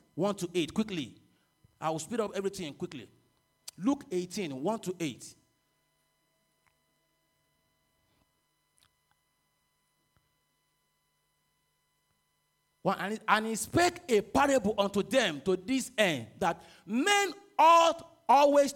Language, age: English, 40-59